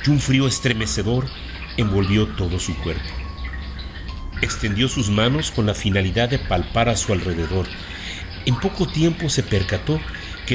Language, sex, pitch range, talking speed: Spanish, male, 95-140 Hz, 140 wpm